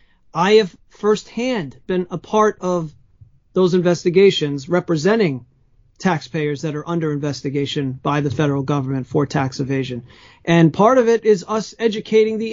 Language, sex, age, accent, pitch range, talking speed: English, male, 40-59, American, 160-215 Hz, 145 wpm